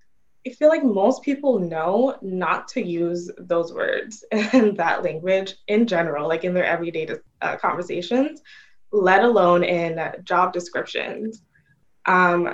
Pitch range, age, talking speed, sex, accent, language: 175-205 Hz, 20-39, 135 wpm, female, American, English